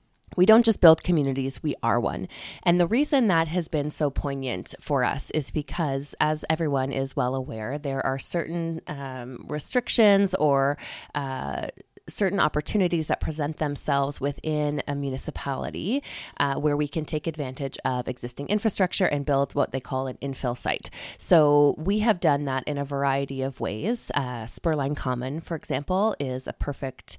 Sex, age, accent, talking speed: female, 20-39, American, 165 wpm